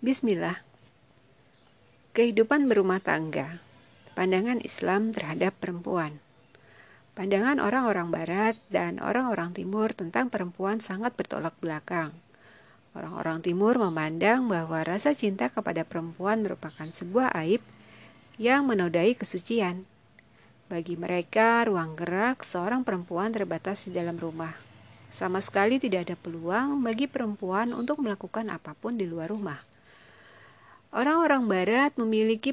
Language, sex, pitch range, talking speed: Indonesian, female, 170-225 Hz, 110 wpm